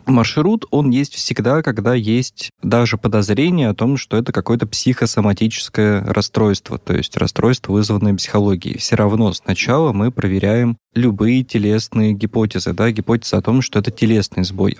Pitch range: 105-120 Hz